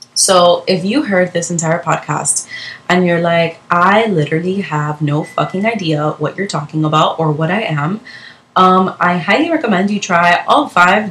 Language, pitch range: English, 155-185 Hz